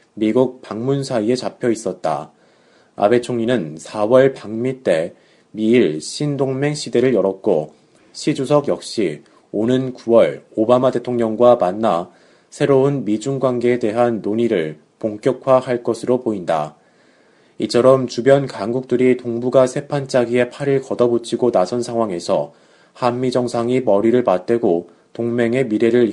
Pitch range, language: 110-130 Hz, Korean